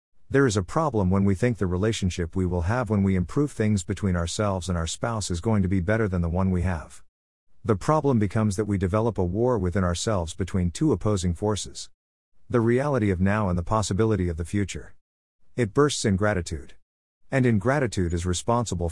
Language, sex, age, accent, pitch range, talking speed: English, male, 50-69, American, 90-110 Hz, 200 wpm